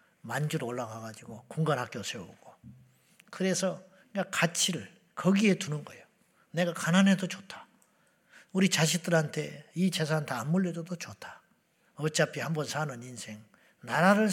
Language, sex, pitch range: Korean, male, 160-215 Hz